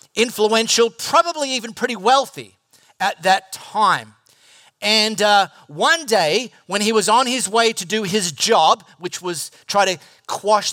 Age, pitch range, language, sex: 40-59, 185-245 Hz, English, male